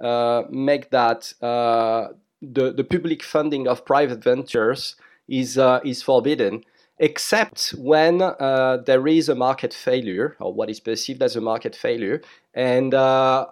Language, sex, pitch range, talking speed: English, male, 125-150 Hz, 140 wpm